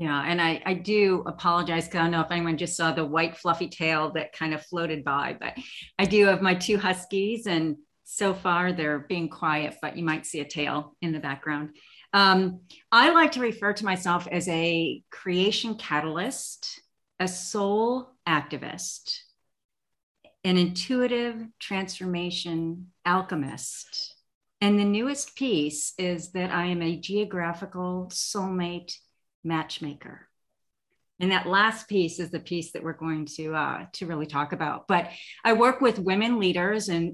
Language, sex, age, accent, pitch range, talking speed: English, female, 40-59, American, 160-200 Hz, 160 wpm